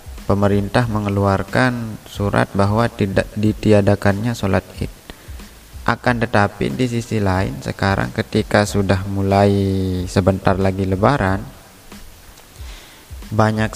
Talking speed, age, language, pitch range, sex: 90 wpm, 20-39, Indonesian, 95-110 Hz, male